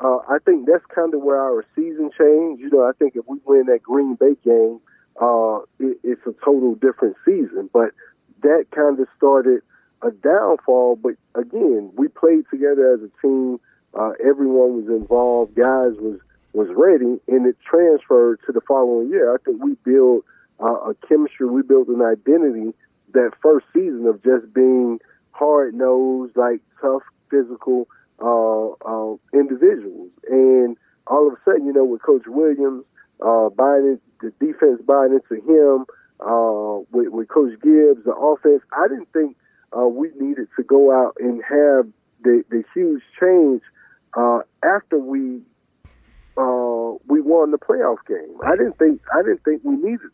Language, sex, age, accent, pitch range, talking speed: English, male, 40-59, American, 125-155 Hz, 170 wpm